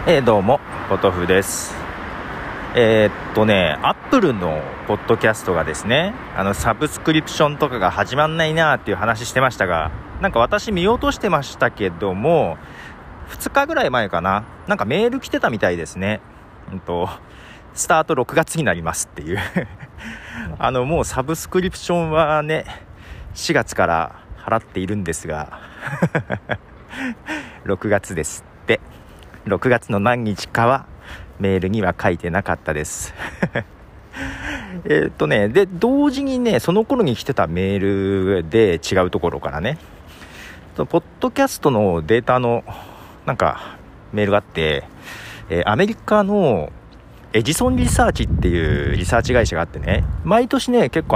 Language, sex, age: Japanese, male, 40-59